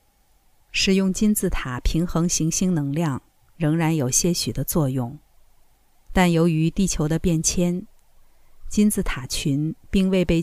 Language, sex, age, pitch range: Chinese, female, 50-69, 140-180 Hz